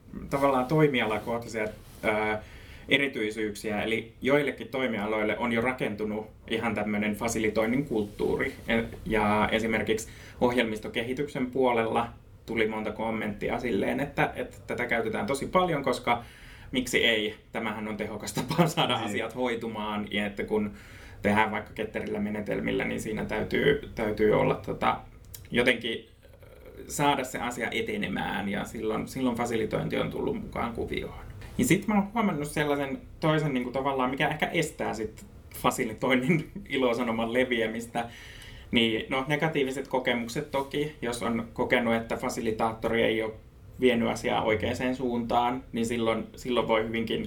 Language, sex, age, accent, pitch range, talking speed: Finnish, male, 20-39, native, 110-130 Hz, 125 wpm